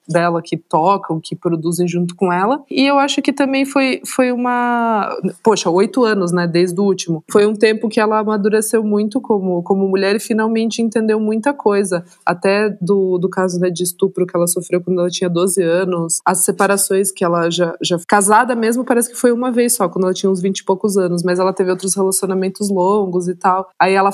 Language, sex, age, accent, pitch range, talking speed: Portuguese, female, 20-39, Brazilian, 180-210 Hz, 210 wpm